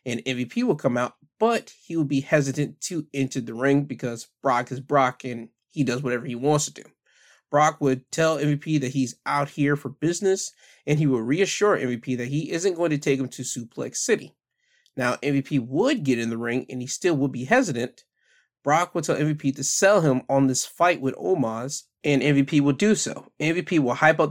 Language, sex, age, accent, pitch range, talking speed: English, male, 20-39, American, 130-155 Hz, 210 wpm